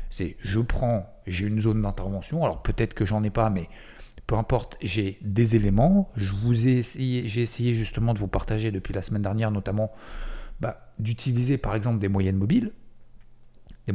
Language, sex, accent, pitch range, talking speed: French, male, French, 100-120 Hz, 180 wpm